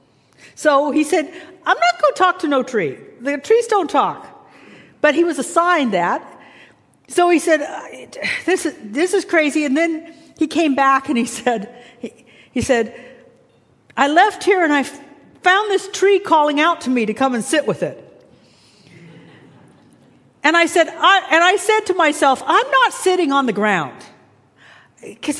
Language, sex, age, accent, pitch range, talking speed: English, female, 50-69, American, 230-330 Hz, 170 wpm